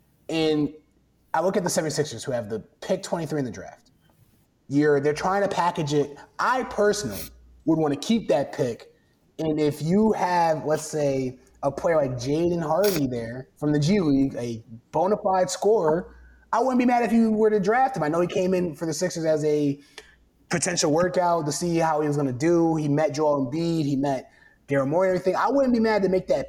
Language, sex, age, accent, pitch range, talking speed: English, male, 20-39, American, 135-175 Hz, 215 wpm